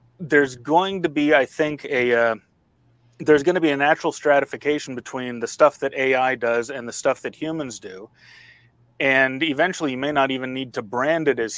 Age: 30-49